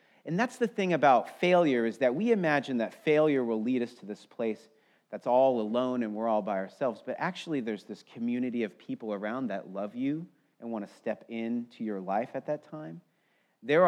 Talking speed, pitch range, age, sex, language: 210 wpm, 110-155 Hz, 30-49, male, English